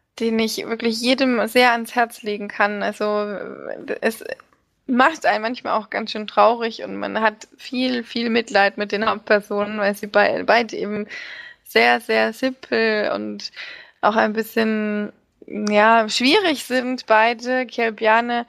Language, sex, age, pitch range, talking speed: German, female, 20-39, 210-235 Hz, 145 wpm